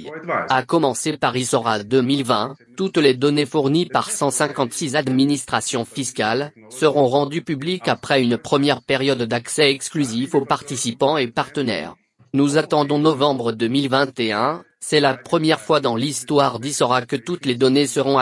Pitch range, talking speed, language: 125-150 Hz, 140 wpm, English